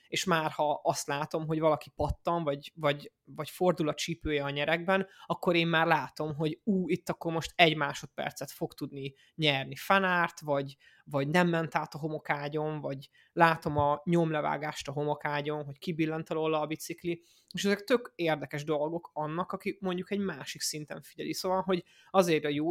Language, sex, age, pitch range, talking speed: Hungarian, male, 20-39, 150-185 Hz, 170 wpm